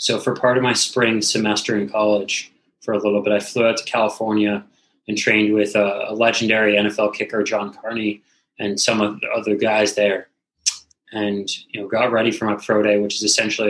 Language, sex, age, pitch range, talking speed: English, male, 20-39, 105-120 Hz, 205 wpm